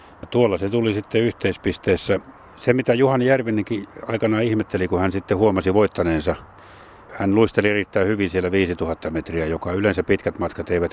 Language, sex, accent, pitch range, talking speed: Finnish, male, native, 90-110 Hz, 155 wpm